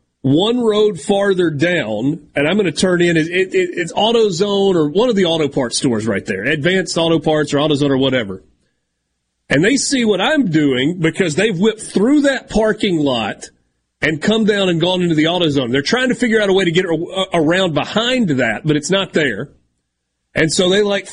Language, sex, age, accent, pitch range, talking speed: English, male, 40-59, American, 140-195 Hz, 195 wpm